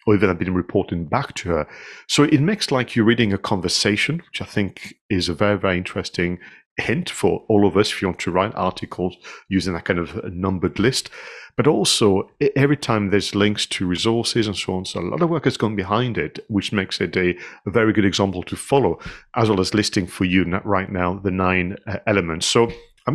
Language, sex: English, male